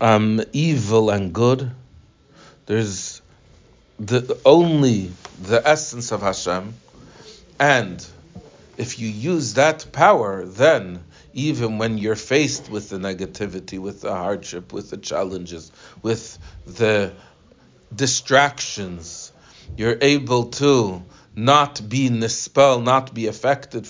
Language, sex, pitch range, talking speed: English, male, 100-140 Hz, 105 wpm